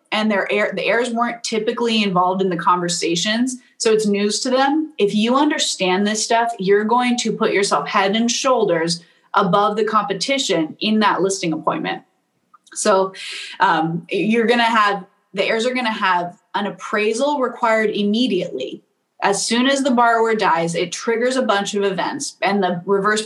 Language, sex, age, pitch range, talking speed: English, female, 20-39, 190-245 Hz, 170 wpm